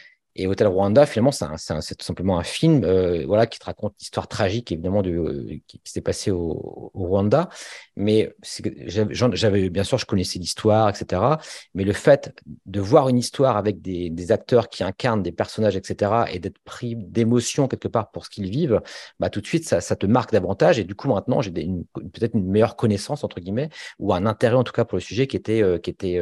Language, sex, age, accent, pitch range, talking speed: French, male, 40-59, French, 95-115 Hz, 230 wpm